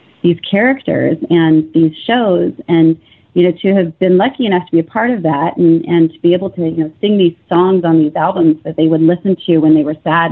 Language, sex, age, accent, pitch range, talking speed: English, female, 30-49, American, 165-195 Hz, 245 wpm